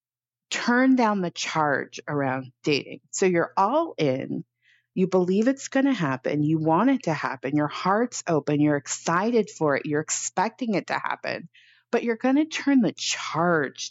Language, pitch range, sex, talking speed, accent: English, 150-210 Hz, female, 175 wpm, American